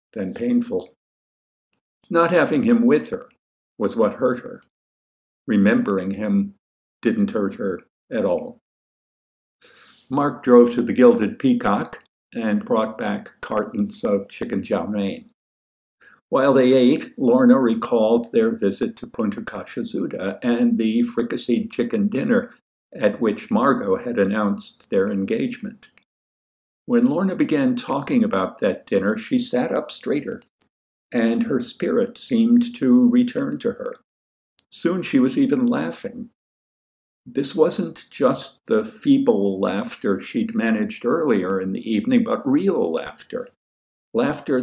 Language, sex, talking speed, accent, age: English, male, 125 wpm, American, 60-79